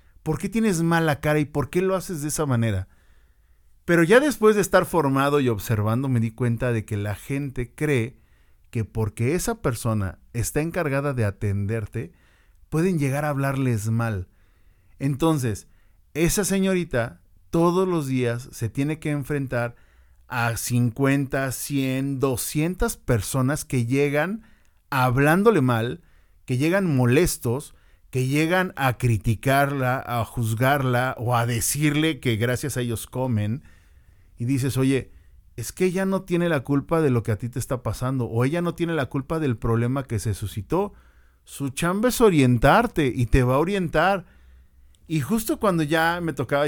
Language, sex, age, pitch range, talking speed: Spanish, male, 50-69, 115-155 Hz, 155 wpm